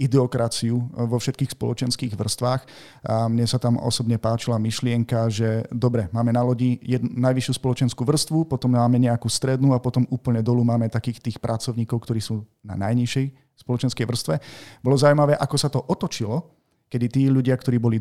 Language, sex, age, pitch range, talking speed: Slovak, male, 40-59, 115-140 Hz, 165 wpm